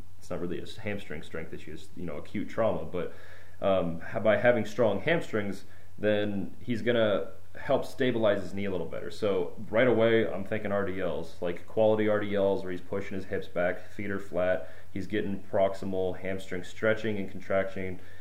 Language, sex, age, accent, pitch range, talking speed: English, male, 30-49, American, 90-105 Hz, 175 wpm